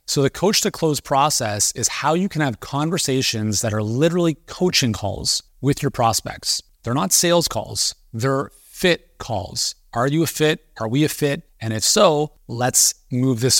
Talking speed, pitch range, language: 180 wpm, 115-155 Hz, English